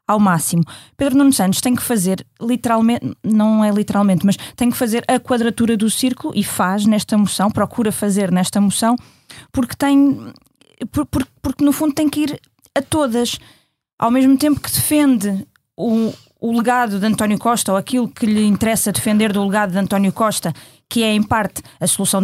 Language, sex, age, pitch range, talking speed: Portuguese, female, 20-39, 195-255 Hz, 185 wpm